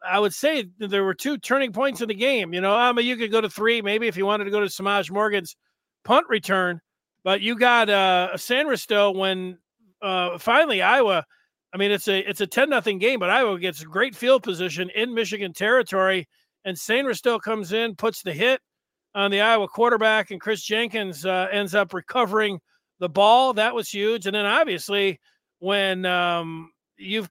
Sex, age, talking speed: male, 40-59, 200 wpm